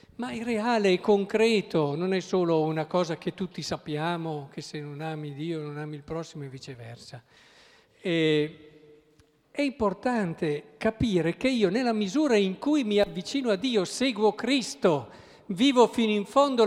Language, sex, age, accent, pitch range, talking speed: Italian, male, 50-69, native, 155-235 Hz, 160 wpm